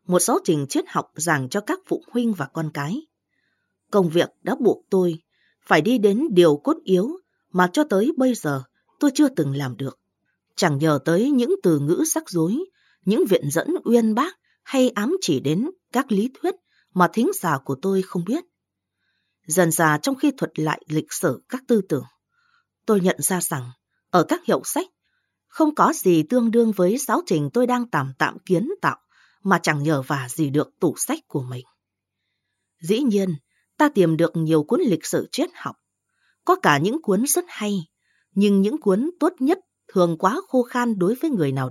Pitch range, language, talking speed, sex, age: 160-265 Hz, Vietnamese, 195 wpm, female, 20-39